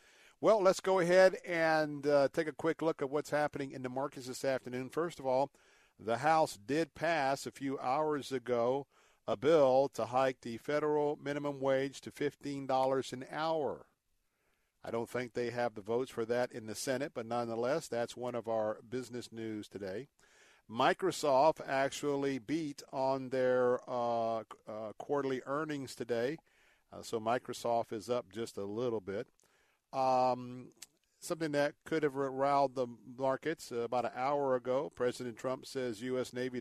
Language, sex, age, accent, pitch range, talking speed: English, male, 50-69, American, 120-140 Hz, 160 wpm